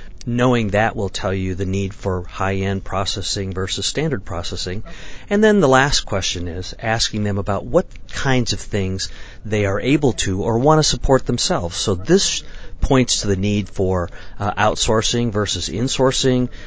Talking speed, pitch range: 165 wpm, 95-115 Hz